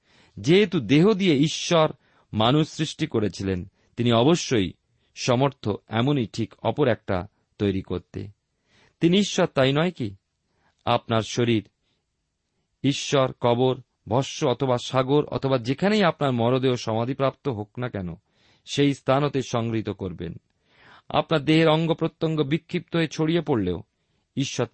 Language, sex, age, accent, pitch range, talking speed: Bengali, male, 40-59, native, 105-150 Hz, 115 wpm